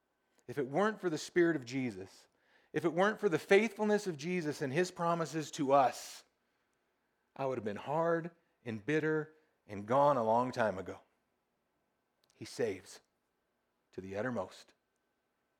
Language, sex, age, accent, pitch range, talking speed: English, male, 40-59, American, 110-145 Hz, 150 wpm